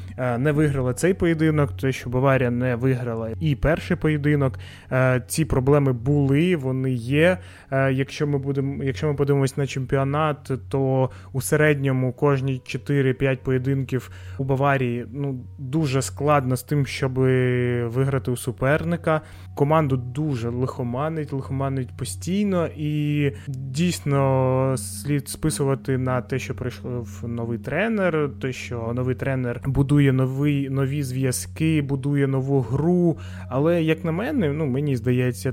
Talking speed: 125 wpm